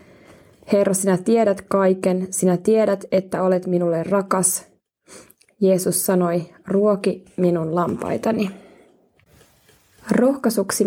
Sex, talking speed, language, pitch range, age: female, 90 wpm, Finnish, 180-210 Hz, 20-39